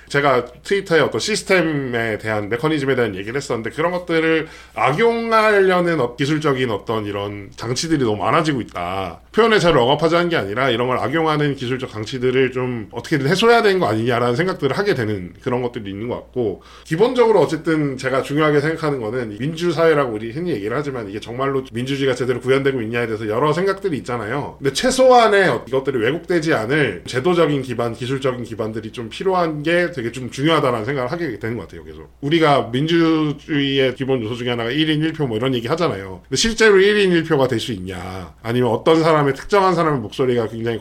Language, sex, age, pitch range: Korean, male, 20-39, 120-160 Hz